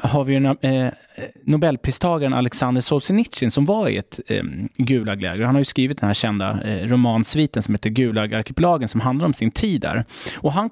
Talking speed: 150 wpm